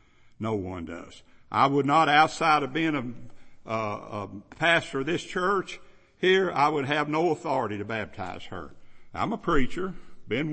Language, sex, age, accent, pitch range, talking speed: English, male, 60-79, American, 105-150 Hz, 160 wpm